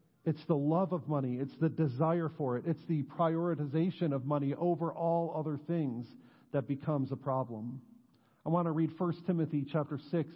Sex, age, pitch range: male, 50-69, 135-170 Hz